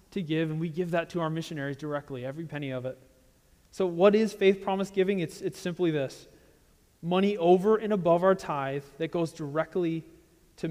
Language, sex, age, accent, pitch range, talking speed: English, male, 30-49, American, 140-180 Hz, 190 wpm